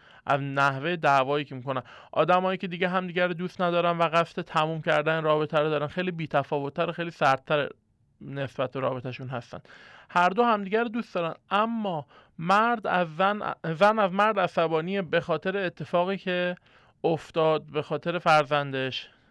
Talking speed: 150 wpm